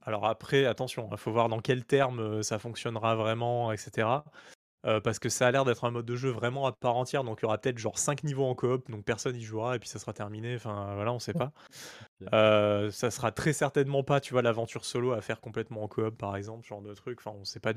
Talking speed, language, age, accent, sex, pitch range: 260 wpm, French, 20-39, French, male, 110-130 Hz